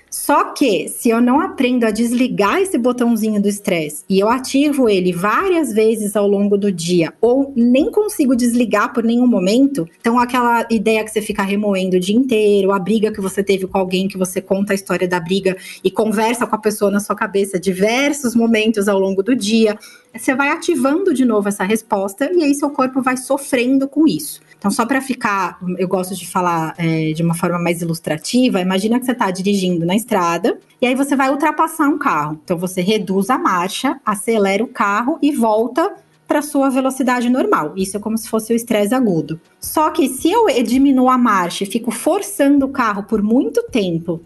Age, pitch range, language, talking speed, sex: 20-39, 190-260 Hz, Portuguese, 200 wpm, female